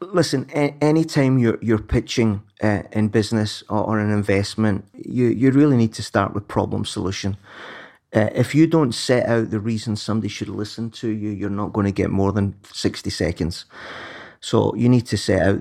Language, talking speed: English, 190 wpm